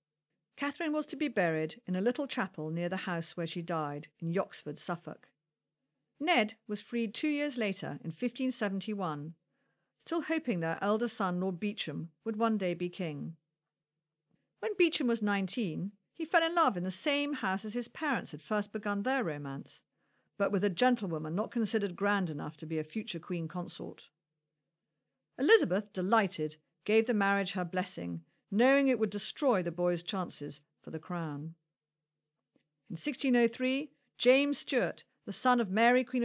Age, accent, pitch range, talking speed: 50-69, British, 165-245 Hz, 160 wpm